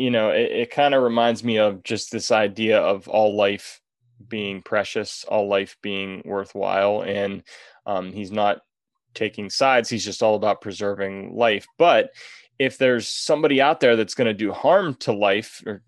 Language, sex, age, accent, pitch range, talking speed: English, male, 20-39, American, 105-125 Hz, 175 wpm